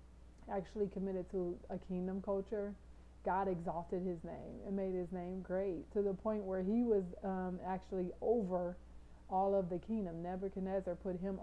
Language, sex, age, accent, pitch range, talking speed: English, female, 30-49, American, 185-210 Hz, 165 wpm